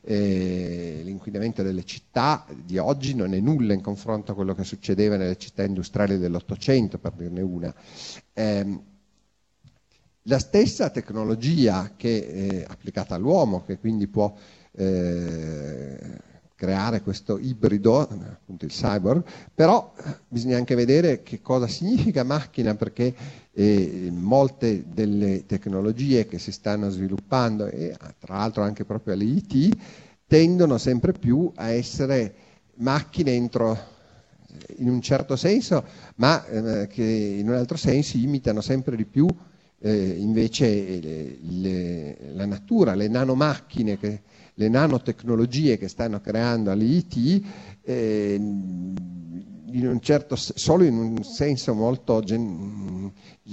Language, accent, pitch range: Italian, native, 100-125 Hz